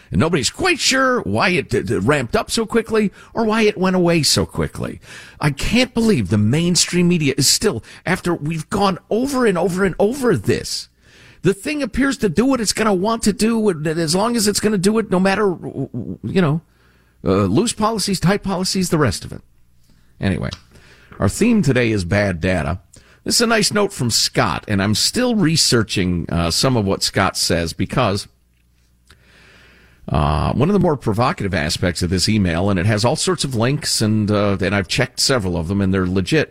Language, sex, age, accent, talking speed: English, male, 50-69, American, 195 wpm